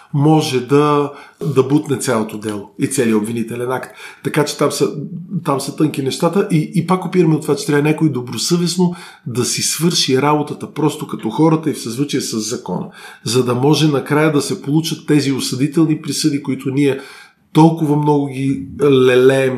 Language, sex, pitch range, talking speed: Bulgarian, male, 130-160 Hz, 175 wpm